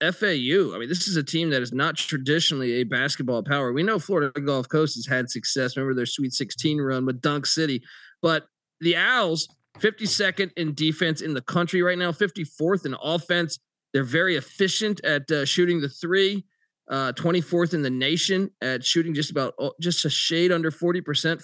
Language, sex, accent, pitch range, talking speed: English, male, American, 135-175 Hz, 185 wpm